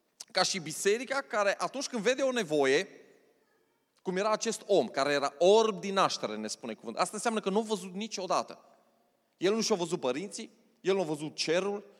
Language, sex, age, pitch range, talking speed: Romanian, male, 30-49, 200-260 Hz, 190 wpm